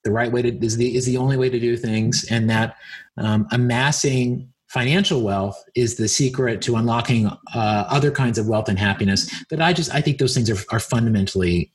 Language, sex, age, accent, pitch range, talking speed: English, male, 30-49, American, 120-155 Hz, 200 wpm